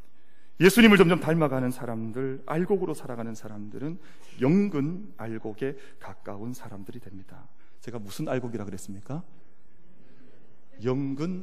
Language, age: Korean, 40-59